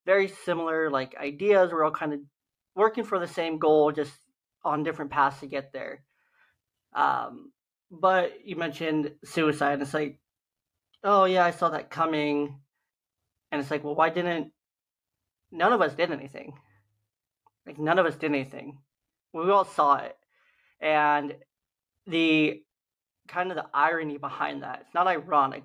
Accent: American